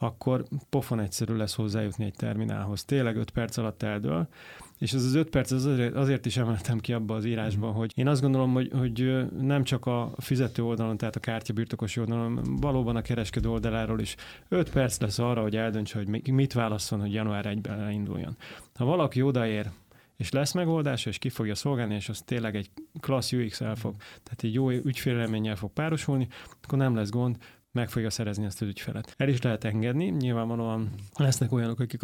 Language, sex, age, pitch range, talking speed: Hungarian, male, 30-49, 110-130 Hz, 190 wpm